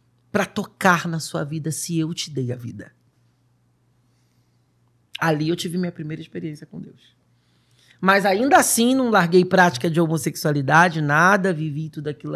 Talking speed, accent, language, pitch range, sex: 150 wpm, Brazilian, Portuguese, 130-195 Hz, male